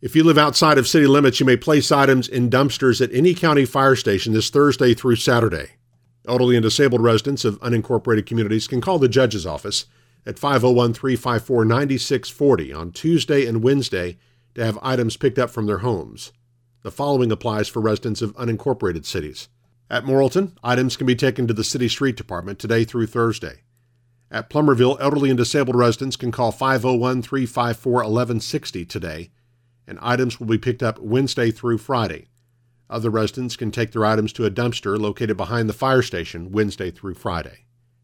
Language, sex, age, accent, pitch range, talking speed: English, male, 50-69, American, 110-130 Hz, 165 wpm